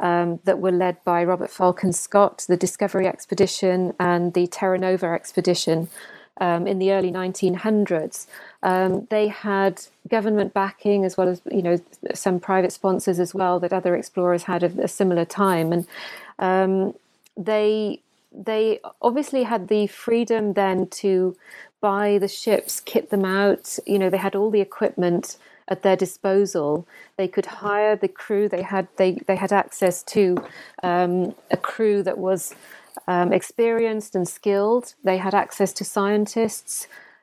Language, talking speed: English, 155 wpm